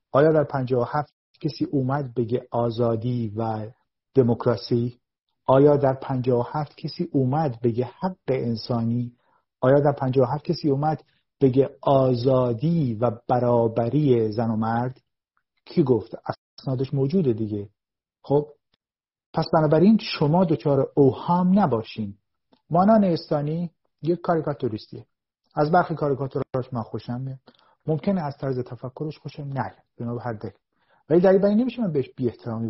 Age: 40-59